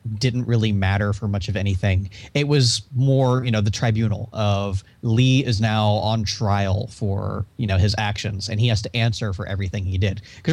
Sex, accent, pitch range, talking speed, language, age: male, American, 100-120 Hz, 200 wpm, English, 30-49